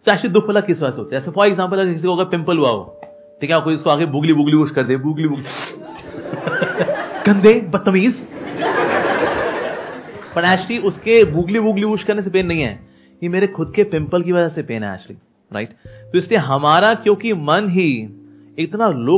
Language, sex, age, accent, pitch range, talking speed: Hindi, male, 30-49, native, 130-190 Hz, 150 wpm